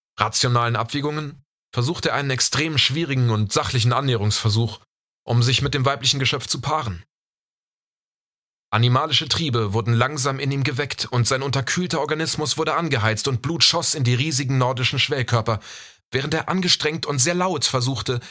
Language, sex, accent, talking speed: German, male, German, 150 wpm